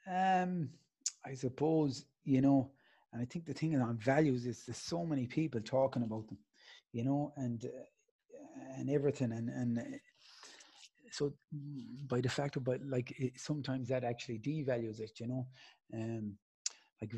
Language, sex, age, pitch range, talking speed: English, male, 30-49, 120-140 Hz, 155 wpm